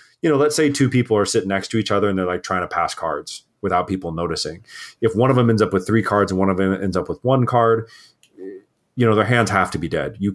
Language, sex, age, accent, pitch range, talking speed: English, male, 30-49, American, 95-115 Hz, 285 wpm